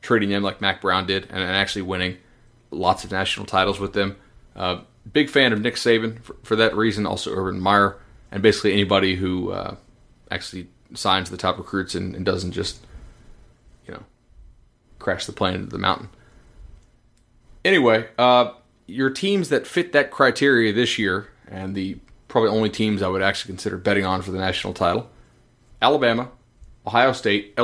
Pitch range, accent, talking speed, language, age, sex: 95-120 Hz, American, 170 wpm, English, 30-49, male